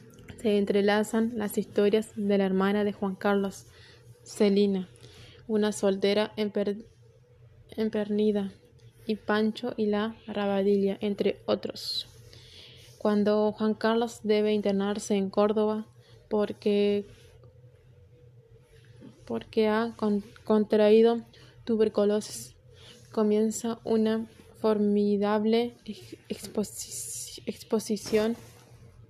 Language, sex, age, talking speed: Spanish, female, 20-39, 75 wpm